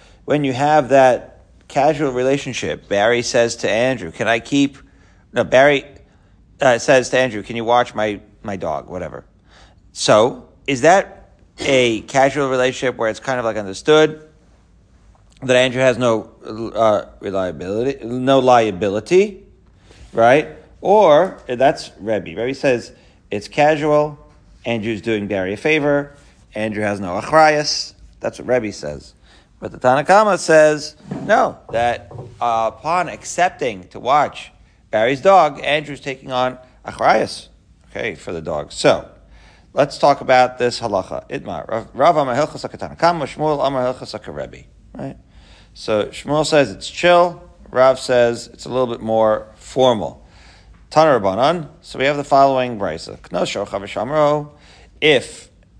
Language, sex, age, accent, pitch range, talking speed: English, male, 40-59, American, 110-145 Hz, 125 wpm